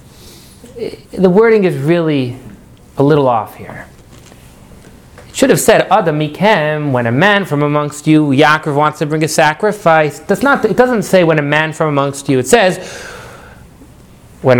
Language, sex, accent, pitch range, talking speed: English, male, American, 140-185 Hz, 160 wpm